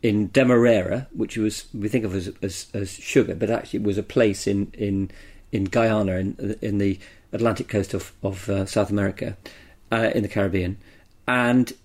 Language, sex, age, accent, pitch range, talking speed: English, male, 40-59, British, 100-120 Hz, 180 wpm